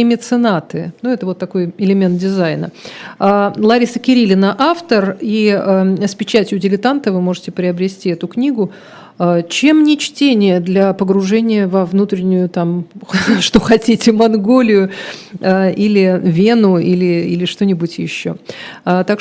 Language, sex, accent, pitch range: Russian, female, native, 185-220 Hz